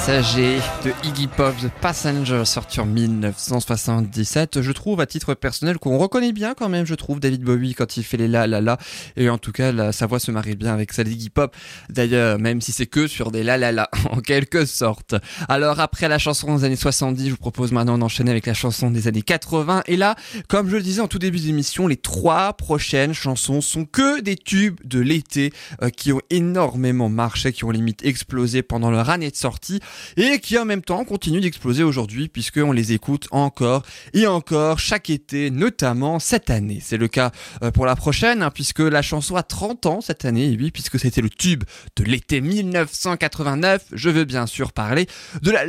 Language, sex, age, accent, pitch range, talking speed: French, male, 20-39, French, 125-175 Hz, 205 wpm